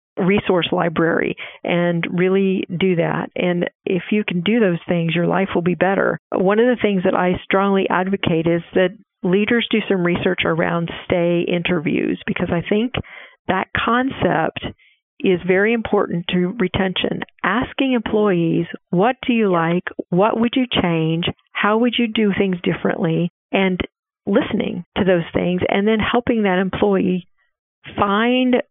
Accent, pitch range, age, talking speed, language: American, 170-205 Hz, 50-69, 150 wpm, English